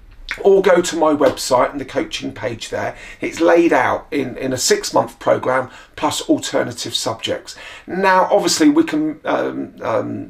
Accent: British